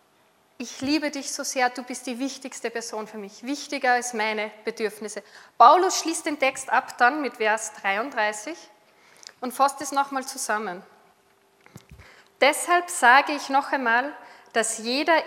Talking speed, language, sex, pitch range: 145 wpm, German, female, 225-275 Hz